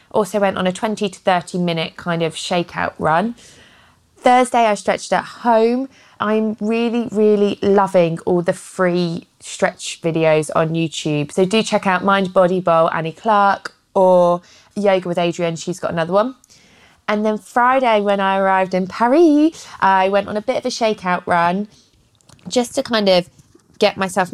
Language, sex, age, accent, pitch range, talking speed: English, female, 20-39, British, 175-210 Hz, 170 wpm